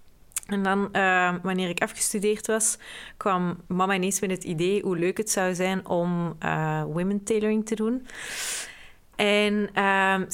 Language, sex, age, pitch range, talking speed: Dutch, female, 20-39, 180-210 Hz, 150 wpm